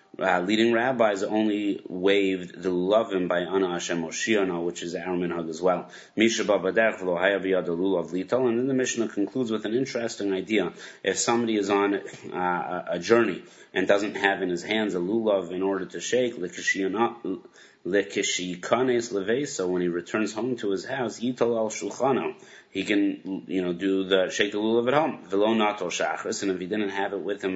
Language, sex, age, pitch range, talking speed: English, male, 30-49, 95-115 Hz, 180 wpm